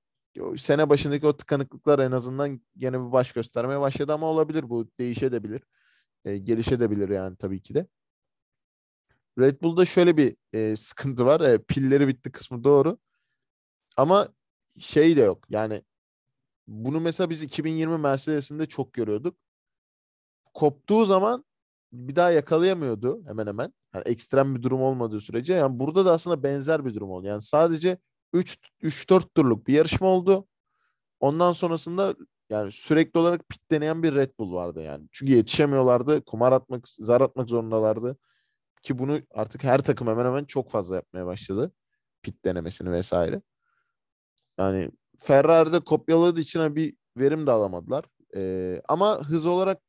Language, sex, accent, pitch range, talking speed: Turkish, male, native, 120-160 Hz, 140 wpm